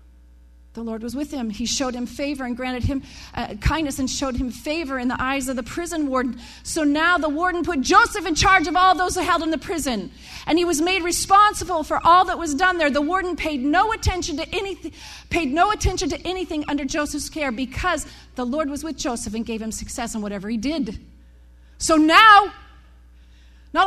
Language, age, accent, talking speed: English, 40-59, American, 215 wpm